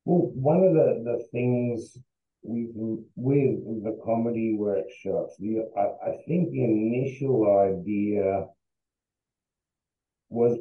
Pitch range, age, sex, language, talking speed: 100-125 Hz, 50-69, male, English, 95 wpm